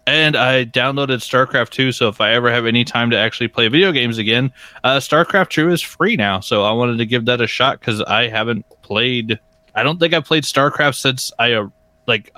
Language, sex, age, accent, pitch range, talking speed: English, male, 20-39, American, 115-140 Hz, 225 wpm